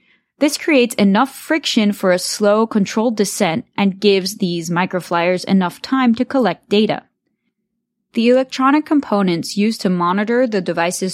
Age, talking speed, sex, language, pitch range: 20-39, 140 wpm, female, English, 185-245 Hz